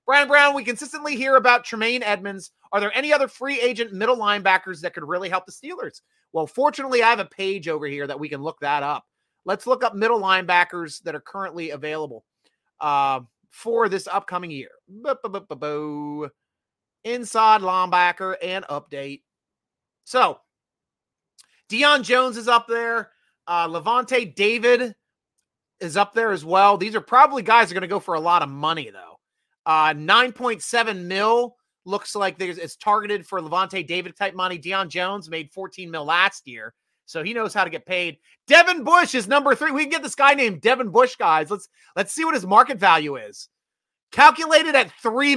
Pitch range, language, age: 170-245 Hz, English, 30-49